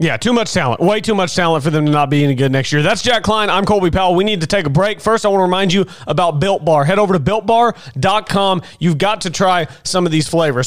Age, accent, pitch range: 30-49, American, 160-200 Hz